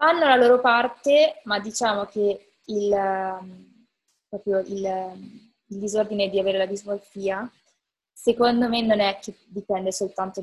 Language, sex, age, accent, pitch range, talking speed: Italian, female, 20-39, native, 195-220 Hz, 125 wpm